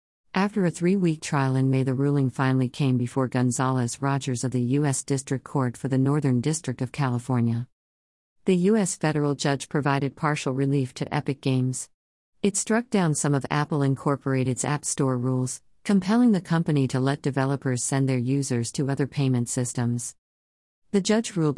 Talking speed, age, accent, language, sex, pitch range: 165 wpm, 50-69, American, English, female, 130-150 Hz